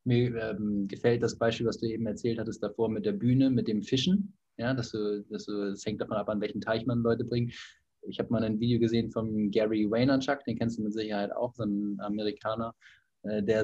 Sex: male